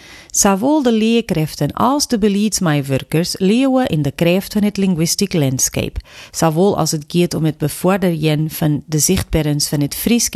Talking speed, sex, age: 155 wpm, female, 40-59